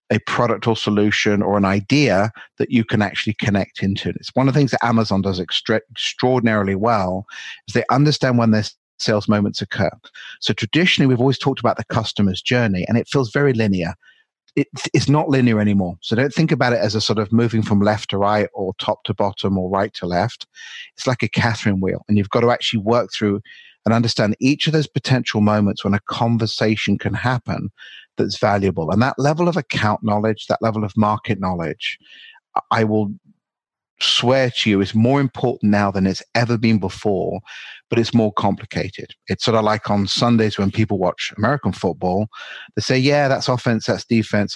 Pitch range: 100-125 Hz